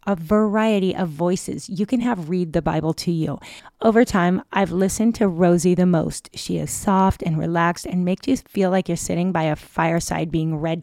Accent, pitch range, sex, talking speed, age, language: American, 170-210 Hz, female, 205 wpm, 30-49, English